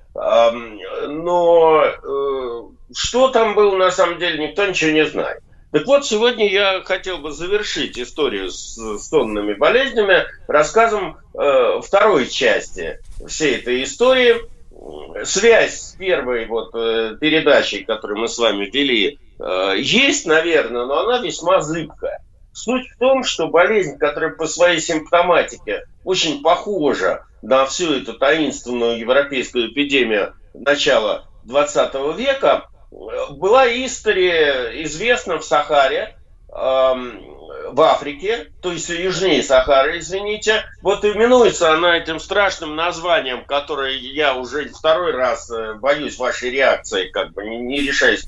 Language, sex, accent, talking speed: Russian, male, native, 120 wpm